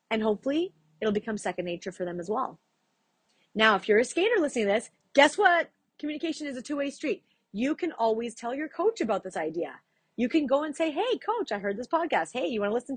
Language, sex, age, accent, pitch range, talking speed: English, female, 30-49, American, 195-270 Hz, 225 wpm